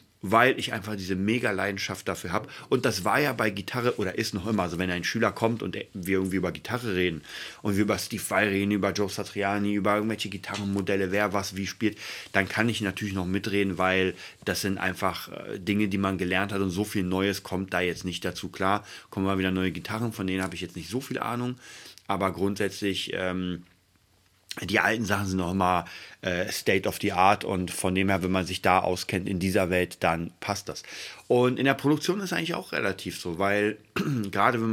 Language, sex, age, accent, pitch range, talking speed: German, male, 30-49, German, 95-110 Hz, 215 wpm